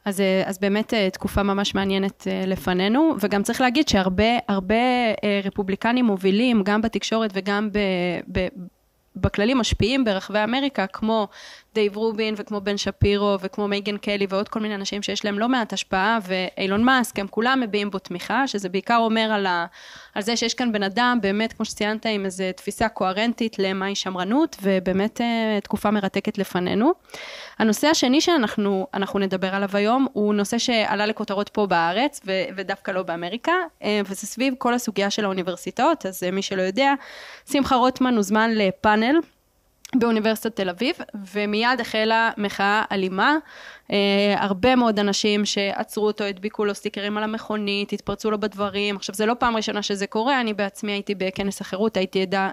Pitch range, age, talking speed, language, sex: 195-230 Hz, 20-39, 145 wpm, English, female